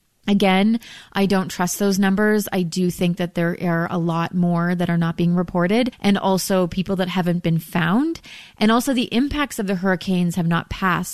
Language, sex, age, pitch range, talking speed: English, female, 30-49, 175-195 Hz, 200 wpm